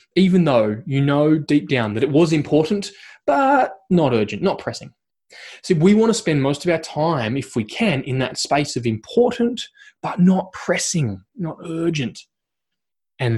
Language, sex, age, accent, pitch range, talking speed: English, male, 20-39, Australian, 125-170 Hz, 170 wpm